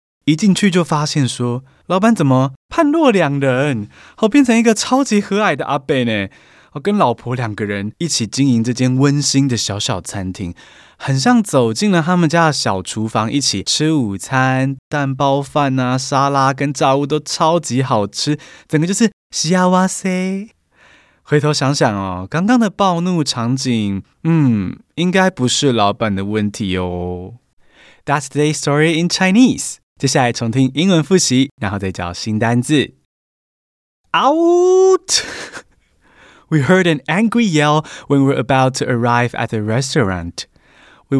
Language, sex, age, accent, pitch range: Chinese, male, 20-39, native, 120-165 Hz